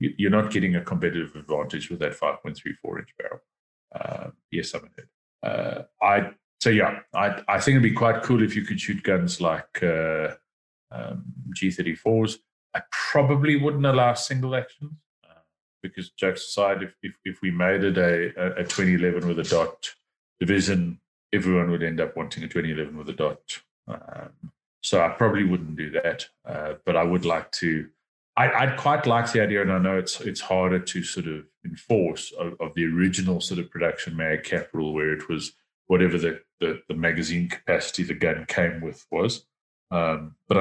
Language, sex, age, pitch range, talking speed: English, male, 30-49, 85-115 Hz, 180 wpm